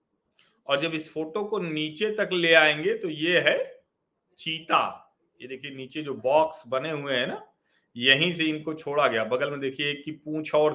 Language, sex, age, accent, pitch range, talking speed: Hindi, male, 40-59, native, 145-175 Hz, 180 wpm